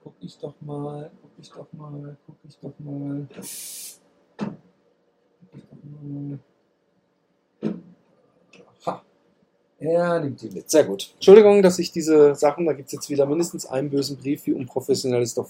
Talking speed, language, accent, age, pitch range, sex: 145 wpm, German, German, 50-69, 115-160 Hz, male